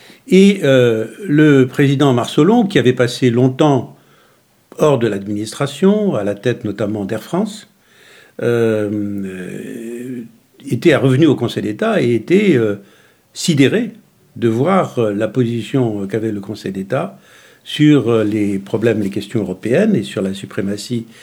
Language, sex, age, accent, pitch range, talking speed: French, male, 60-79, French, 110-150 Hz, 130 wpm